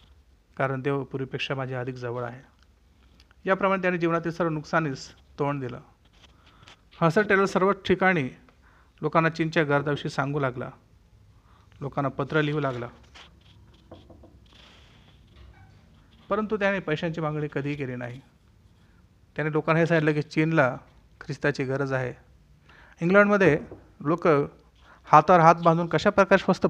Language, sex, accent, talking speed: Hindi, male, native, 120 wpm